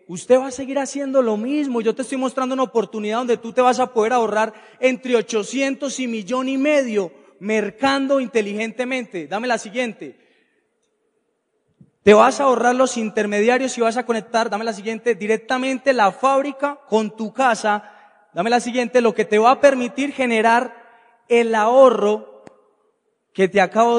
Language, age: Spanish, 30-49